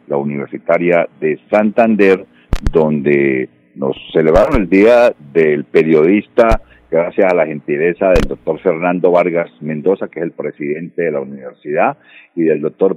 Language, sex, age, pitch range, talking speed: Spanish, male, 50-69, 75-95 Hz, 140 wpm